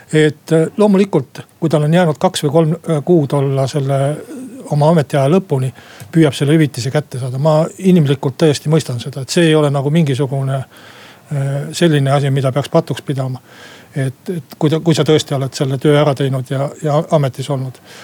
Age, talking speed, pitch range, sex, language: 60-79, 175 wpm, 135-160 Hz, male, Finnish